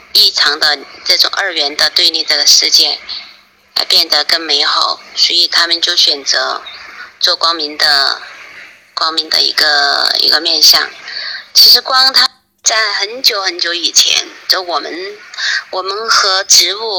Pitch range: 165-255 Hz